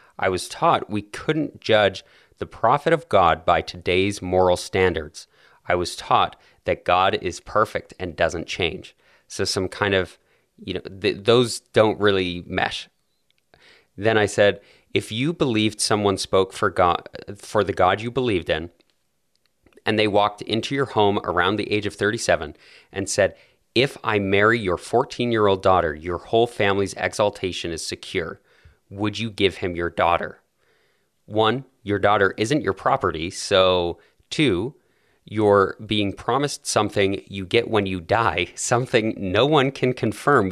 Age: 30-49